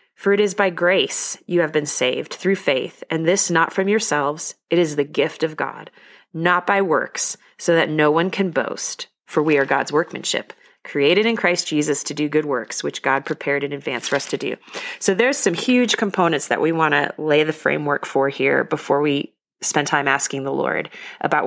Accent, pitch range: American, 150-195 Hz